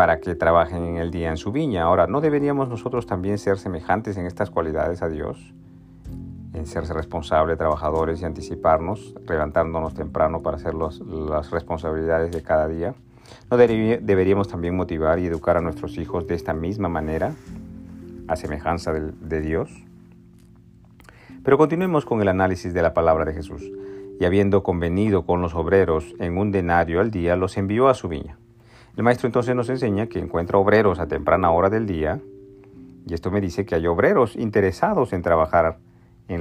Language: Spanish